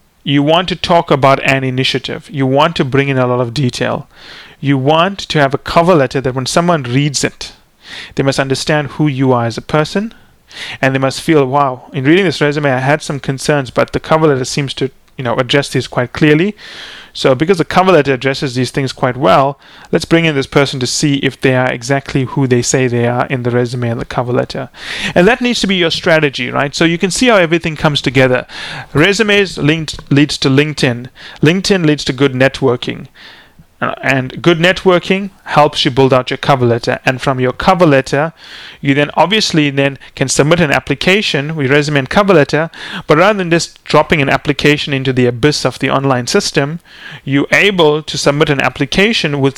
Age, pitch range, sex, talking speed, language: 30-49, 135-165 Hz, male, 205 wpm, English